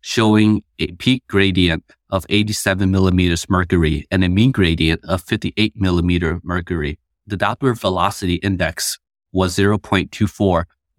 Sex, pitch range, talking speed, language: male, 90-100 Hz, 120 wpm, English